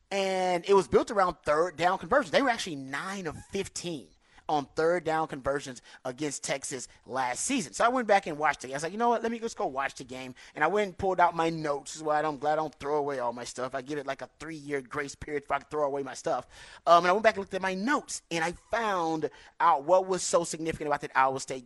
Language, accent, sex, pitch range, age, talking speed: English, American, male, 150-190 Hz, 30-49, 270 wpm